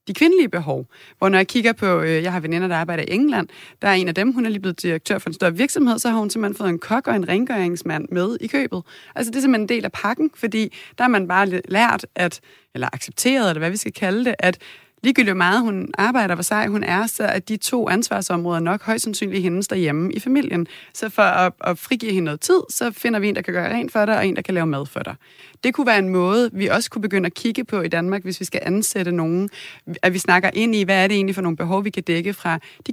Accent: native